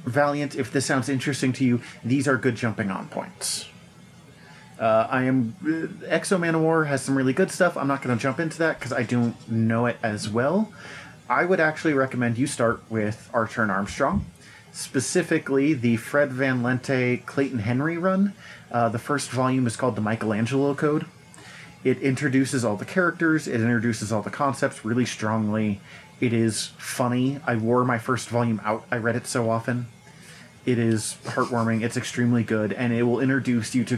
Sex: male